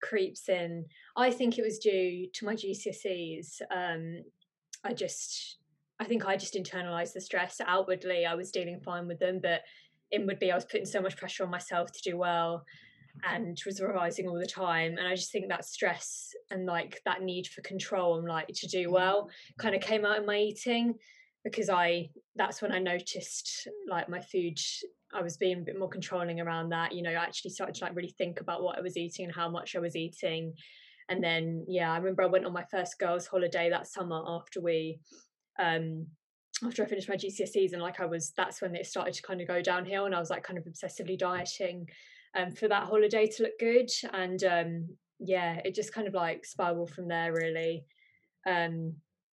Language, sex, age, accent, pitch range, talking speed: English, female, 20-39, British, 170-195 Hz, 210 wpm